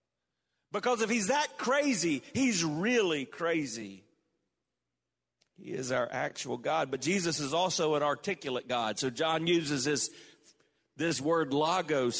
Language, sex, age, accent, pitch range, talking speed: English, male, 50-69, American, 110-170 Hz, 135 wpm